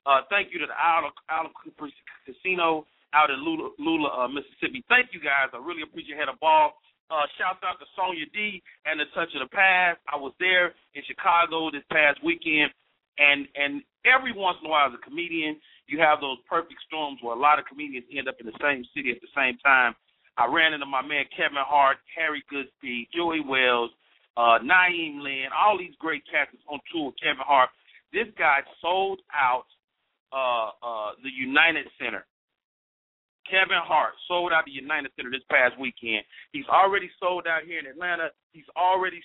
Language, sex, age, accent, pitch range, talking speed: English, male, 40-59, American, 135-180 Hz, 195 wpm